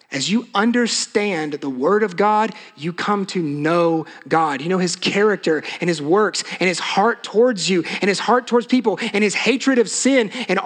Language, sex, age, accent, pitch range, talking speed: English, male, 30-49, American, 185-235 Hz, 195 wpm